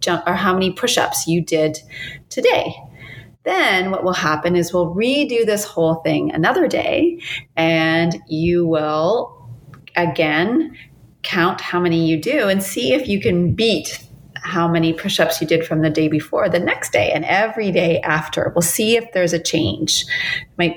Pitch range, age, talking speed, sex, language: 165-205 Hz, 30-49, 170 wpm, female, English